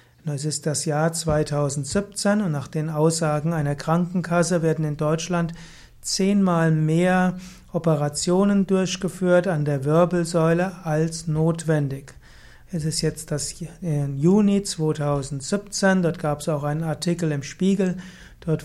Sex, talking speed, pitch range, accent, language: male, 130 wpm, 155-180 Hz, German, German